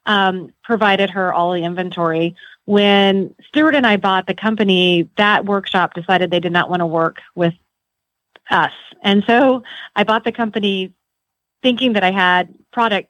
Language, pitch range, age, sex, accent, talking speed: English, 175-200 Hz, 30-49, female, American, 160 wpm